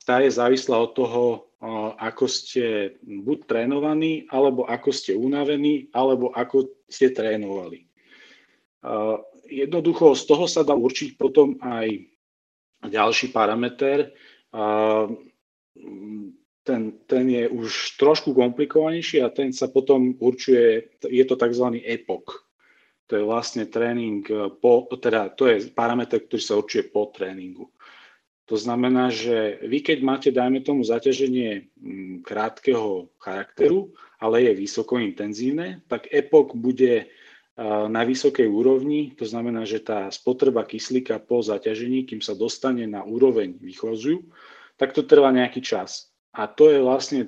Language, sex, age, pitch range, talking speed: Slovak, male, 40-59, 115-140 Hz, 125 wpm